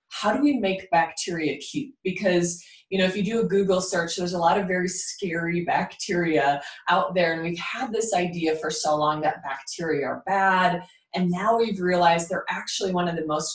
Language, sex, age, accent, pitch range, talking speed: English, female, 20-39, American, 160-195 Hz, 205 wpm